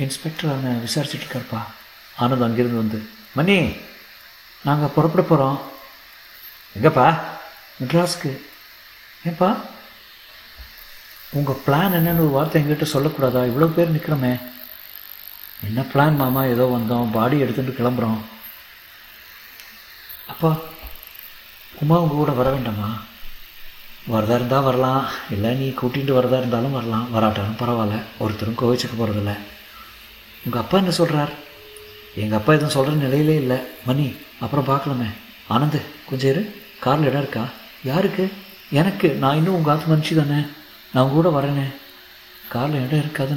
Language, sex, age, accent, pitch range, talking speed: Tamil, male, 60-79, native, 115-150 Hz, 115 wpm